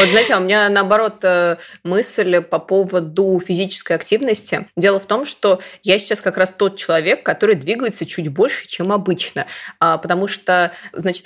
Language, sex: Russian, female